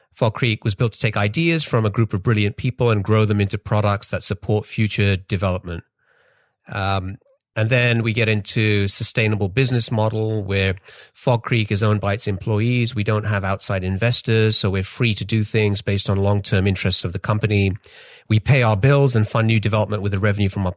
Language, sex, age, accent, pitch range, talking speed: English, male, 30-49, British, 100-115 Hz, 200 wpm